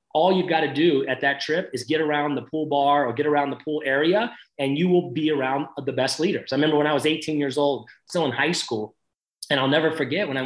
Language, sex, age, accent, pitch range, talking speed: English, male, 30-49, American, 130-155 Hz, 265 wpm